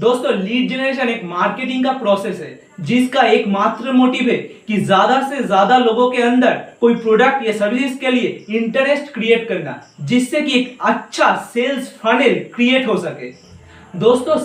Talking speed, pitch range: 160 wpm, 220-265 Hz